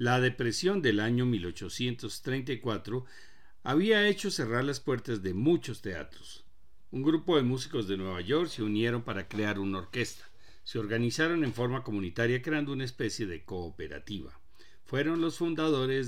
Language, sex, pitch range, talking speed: Spanish, male, 105-150 Hz, 145 wpm